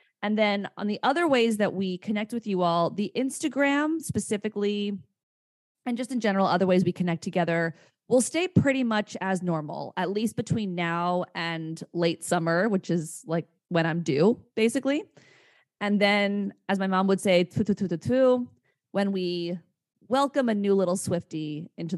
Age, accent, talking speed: 20-39, American, 160 wpm